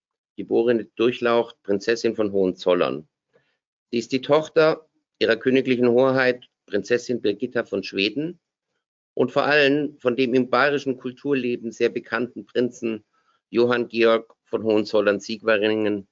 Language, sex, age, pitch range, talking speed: German, male, 50-69, 100-125 Hz, 115 wpm